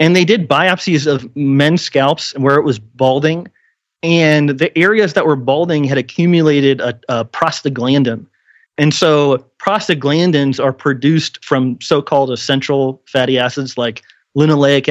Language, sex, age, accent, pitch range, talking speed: English, male, 30-49, American, 135-165 Hz, 140 wpm